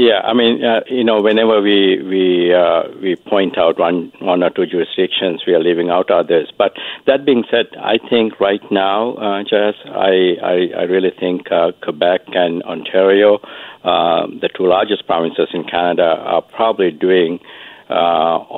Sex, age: male, 60-79